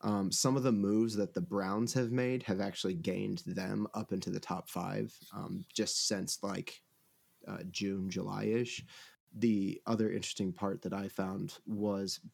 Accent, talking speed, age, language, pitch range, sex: American, 165 wpm, 20-39, English, 100-115 Hz, male